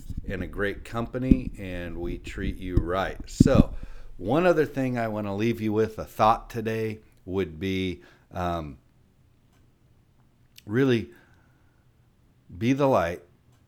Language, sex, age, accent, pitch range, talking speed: English, male, 60-79, American, 95-120 Hz, 125 wpm